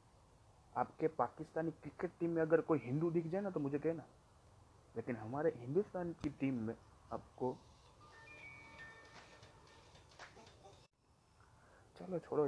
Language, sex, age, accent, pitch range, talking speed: Hindi, male, 30-49, native, 120-185 Hz, 110 wpm